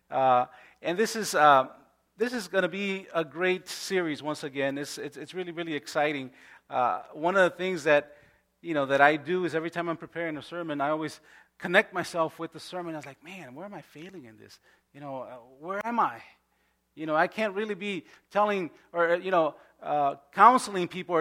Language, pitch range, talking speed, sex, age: Spanish, 145-190 Hz, 210 wpm, male, 30-49